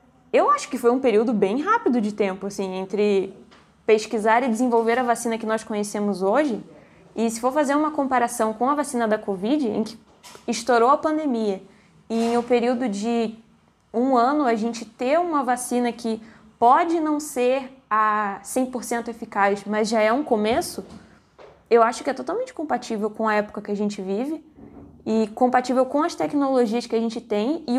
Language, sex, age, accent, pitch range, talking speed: Portuguese, female, 20-39, Brazilian, 215-285 Hz, 180 wpm